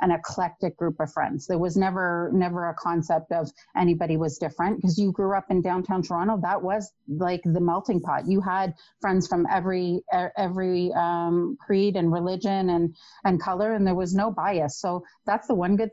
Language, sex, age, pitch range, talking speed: English, female, 30-49, 175-205 Hz, 190 wpm